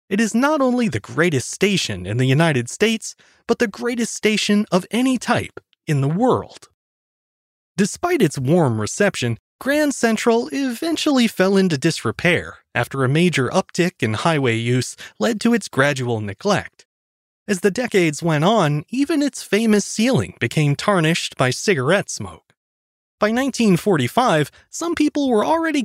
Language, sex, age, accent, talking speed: English, male, 30-49, American, 145 wpm